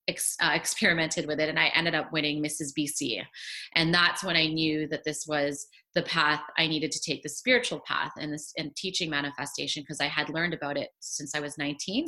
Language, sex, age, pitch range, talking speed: English, female, 30-49, 150-180 Hz, 220 wpm